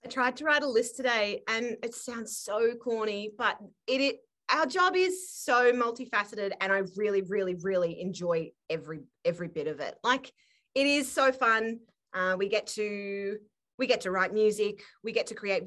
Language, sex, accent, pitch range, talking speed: English, female, Australian, 200-250 Hz, 190 wpm